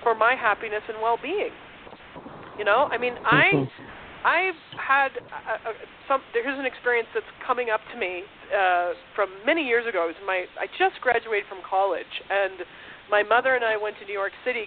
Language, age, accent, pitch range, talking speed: English, 40-59, American, 190-250 Hz, 190 wpm